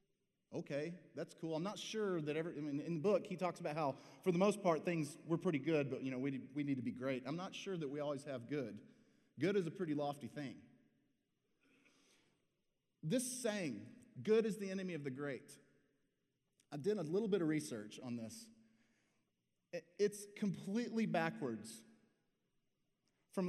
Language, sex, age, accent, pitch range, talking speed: English, male, 30-49, American, 140-195 Hz, 180 wpm